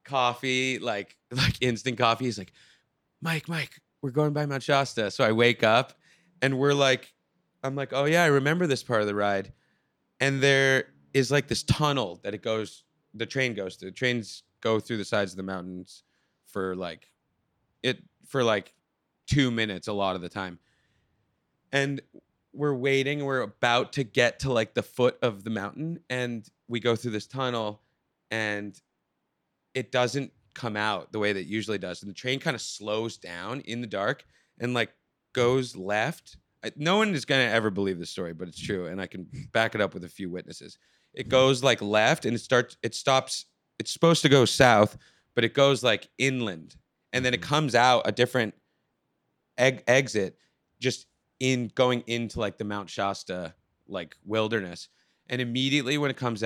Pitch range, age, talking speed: 105-135 Hz, 30-49, 190 wpm